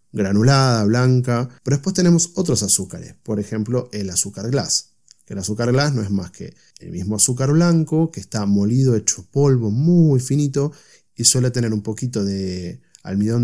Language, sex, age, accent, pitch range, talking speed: Spanish, male, 30-49, Argentinian, 100-130 Hz, 170 wpm